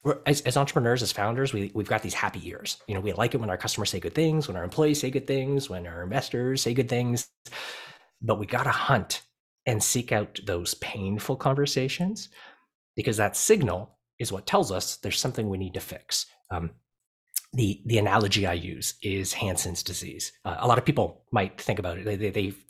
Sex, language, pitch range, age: male, English, 95-130 Hz, 30-49